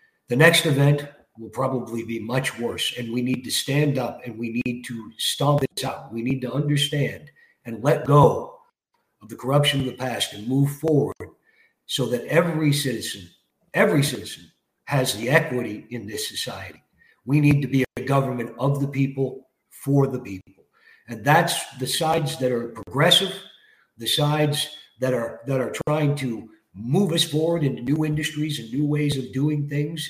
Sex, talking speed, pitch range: male, 175 wpm, 125-150 Hz